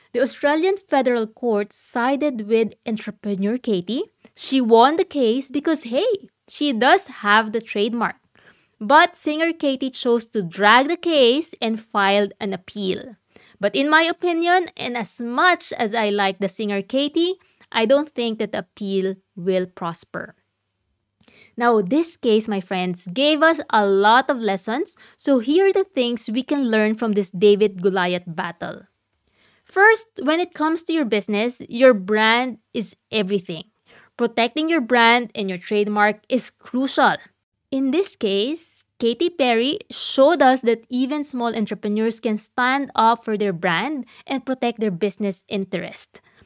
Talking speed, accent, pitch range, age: 150 wpm, Filipino, 210-290 Hz, 20-39